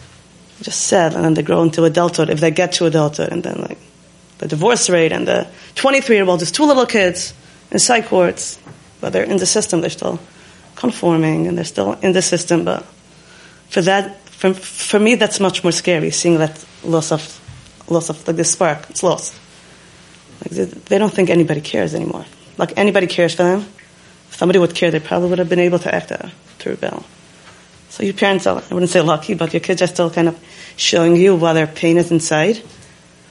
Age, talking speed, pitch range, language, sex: 30-49, 205 wpm, 165-200 Hz, English, female